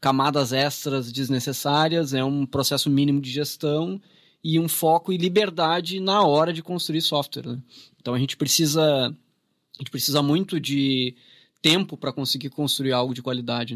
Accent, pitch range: Brazilian, 130-165 Hz